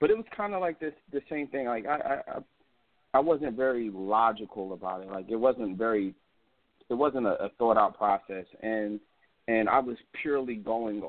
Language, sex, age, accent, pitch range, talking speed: English, male, 30-49, American, 100-120 Hz, 195 wpm